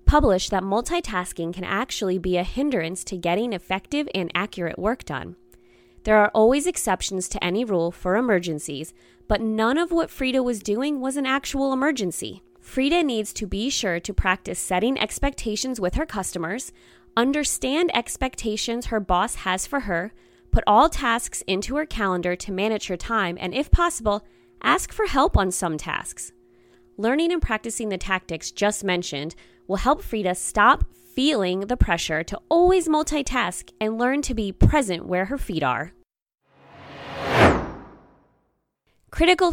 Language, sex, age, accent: English, female, 20-39, American